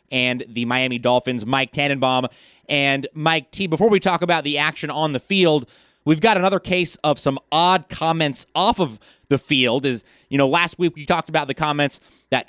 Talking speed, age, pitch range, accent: 195 wpm, 20-39, 130-155 Hz, American